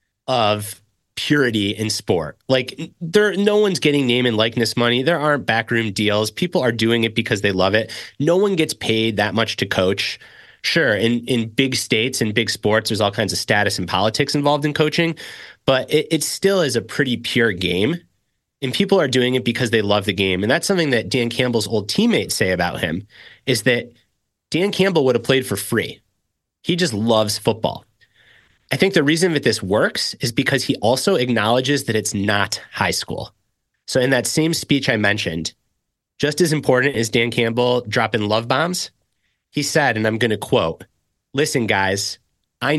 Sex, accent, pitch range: male, American, 110-145 Hz